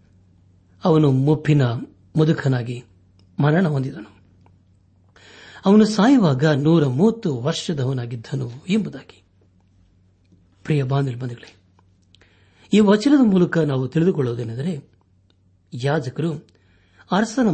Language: Kannada